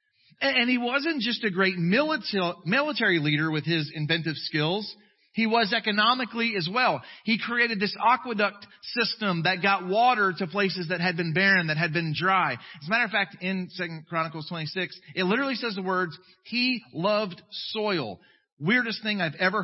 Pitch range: 175-235 Hz